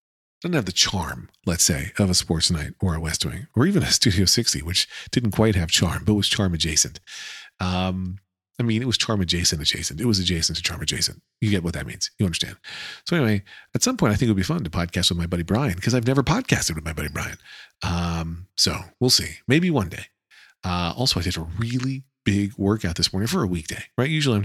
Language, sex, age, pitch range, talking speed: English, male, 40-59, 85-110 Hz, 235 wpm